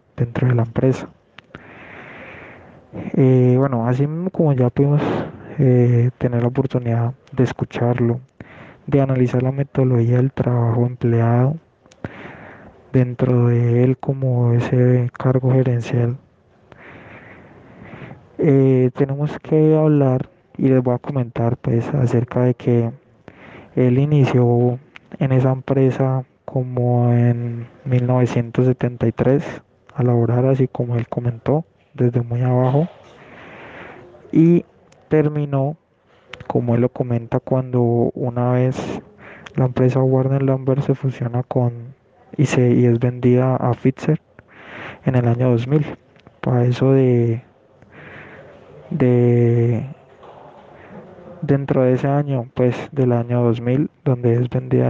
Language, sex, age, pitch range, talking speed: Spanish, male, 20-39, 120-135 Hz, 110 wpm